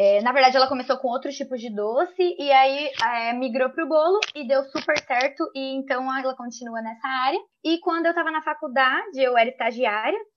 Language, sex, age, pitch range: Portuguese, female, 20-39, 230-295 Hz